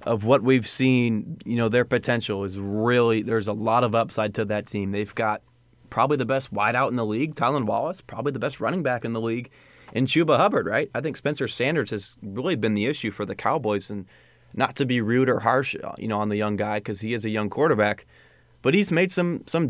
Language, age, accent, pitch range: English, 20-39, American, 105-130 Hz